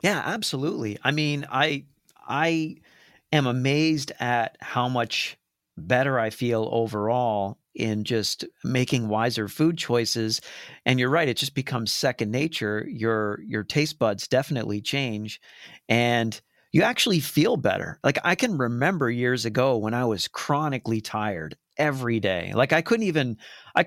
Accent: American